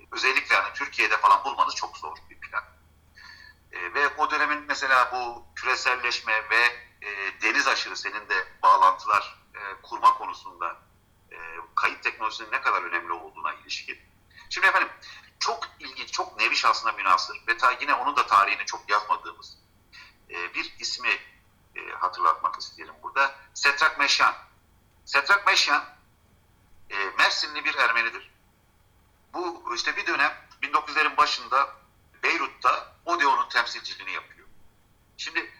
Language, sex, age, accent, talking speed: Turkish, male, 50-69, native, 125 wpm